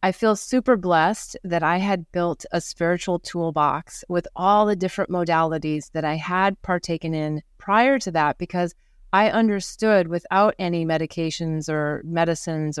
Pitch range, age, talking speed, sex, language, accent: 160-190 Hz, 30-49, 150 wpm, female, English, American